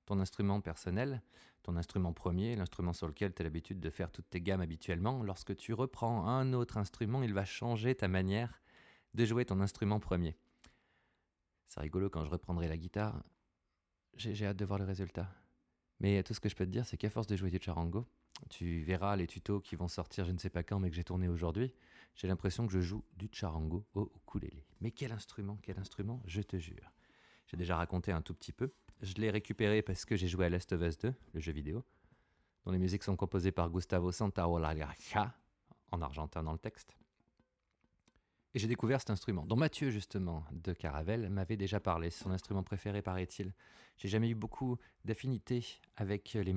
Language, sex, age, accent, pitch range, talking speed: French, male, 30-49, French, 90-105 Hz, 205 wpm